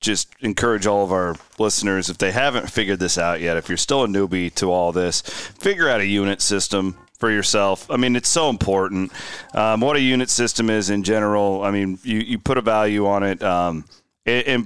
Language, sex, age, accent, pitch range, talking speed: English, male, 30-49, American, 100-125 Hz, 215 wpm